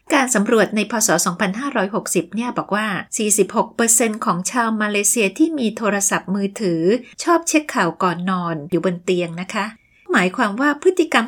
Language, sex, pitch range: Thai, female, 195-275 Hz